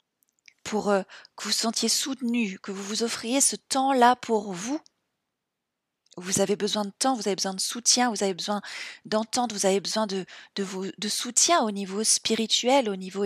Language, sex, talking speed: French, female, 190 wpm